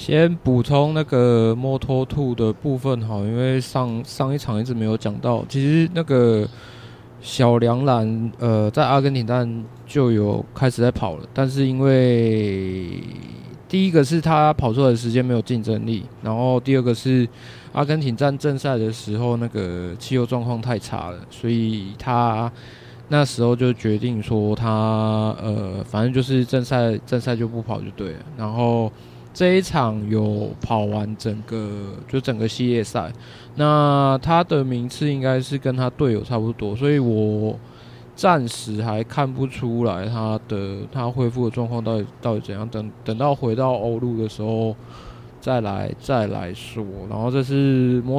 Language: Chinese